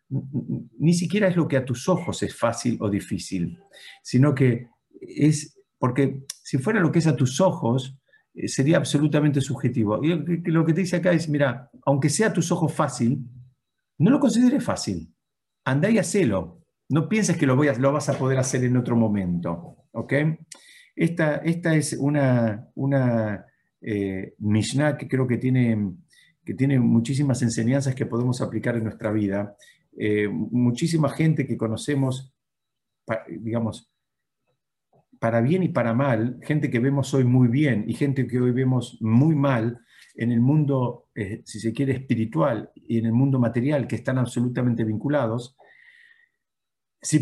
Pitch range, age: 120-155 Hz, 50-69